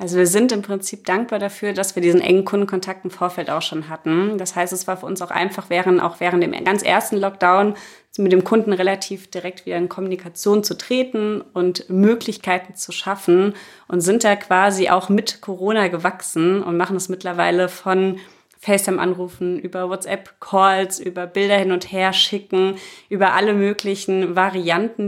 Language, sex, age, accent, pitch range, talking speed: German, female, 30-49, German, 180-210 Hz, 175 wpm